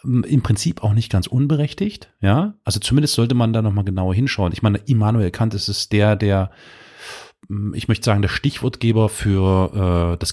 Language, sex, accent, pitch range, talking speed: German, male, German, 95-120 Hz, 180 wpm